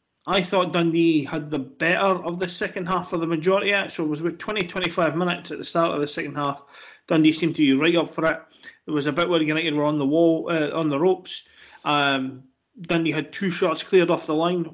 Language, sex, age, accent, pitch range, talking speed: English, male, 20-39, British, 145-175 Hz, 250 wpm